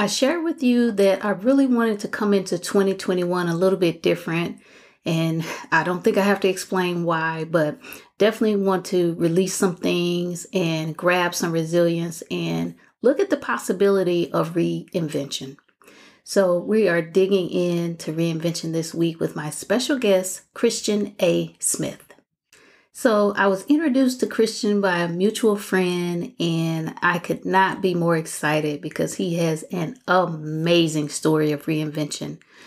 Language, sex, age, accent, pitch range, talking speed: English, female, 30-49, American, 165-210 Hz, 150 wpm